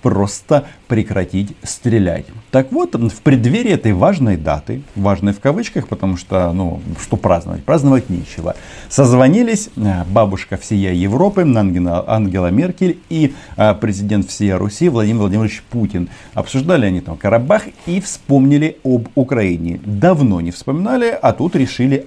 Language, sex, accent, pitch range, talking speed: Russian, male, native, 95-140 Hz, 130 wpm